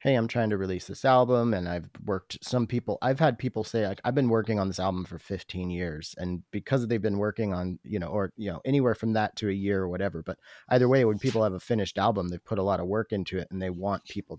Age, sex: 30-49, male